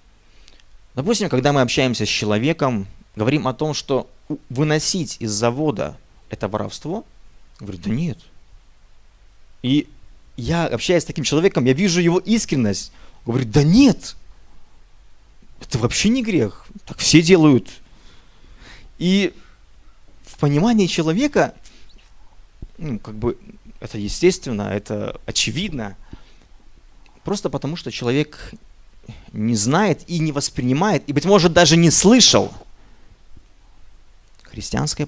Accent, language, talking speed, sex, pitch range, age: native, Russian, 115 wpm, male, 105-155 Hz, 30-49